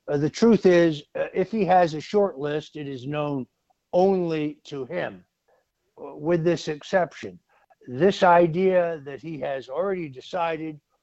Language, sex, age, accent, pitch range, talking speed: English, male, 60-79, American, 150-205 Hz, 145 wpm